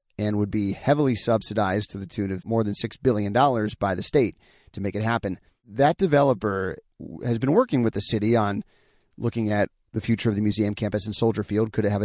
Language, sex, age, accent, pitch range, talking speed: English, male, 30-49, American, 105-120 Hz, 215 wpm